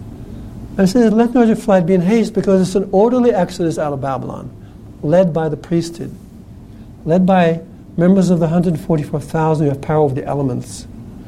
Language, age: English, 60-79